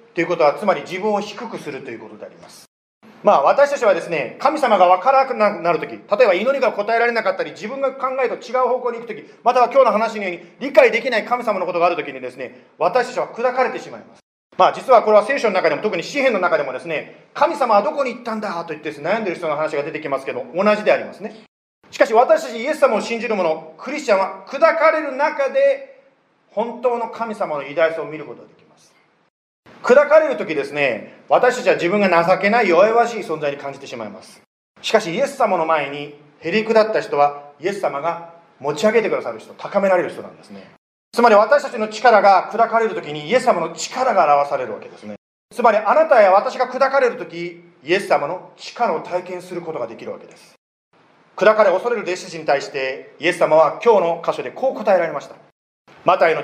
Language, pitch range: Japanese, 170-255 Hz